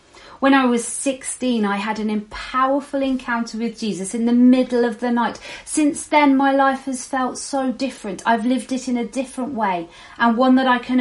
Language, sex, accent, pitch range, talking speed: English, female, British, 200-255 Hz, 200 wpm